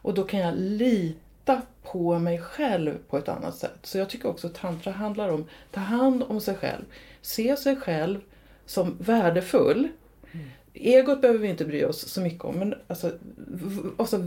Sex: female